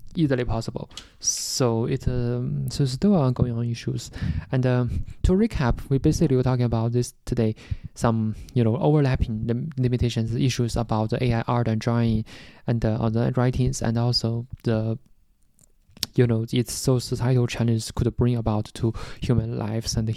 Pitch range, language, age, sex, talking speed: 115-130 Hz, English, 20-39, male, 160 wpm